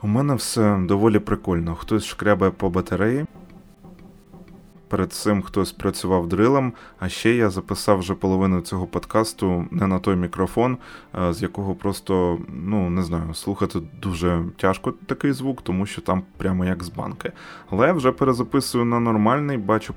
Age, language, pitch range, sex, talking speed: 20-39, Ukrainian, 95-135 Hz, male, 155 wpm